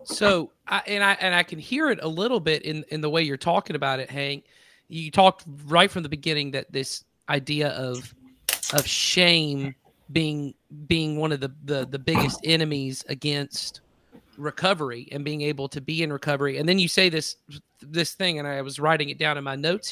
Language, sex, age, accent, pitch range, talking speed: English, male, 40-59, American, 140-165 Hz, 200 wpm